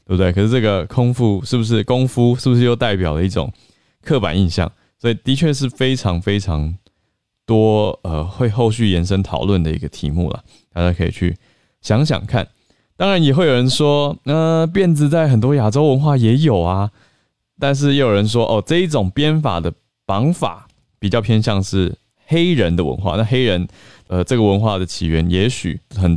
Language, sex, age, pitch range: Chinese, male, 20-39, 90-120 Hz